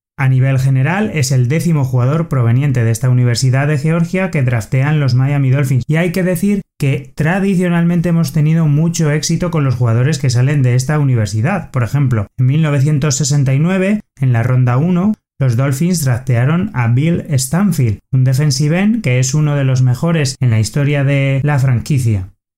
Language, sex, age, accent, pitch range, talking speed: Spanish, male, 30-49, Spanish, 130-165 Hz, 170 wpm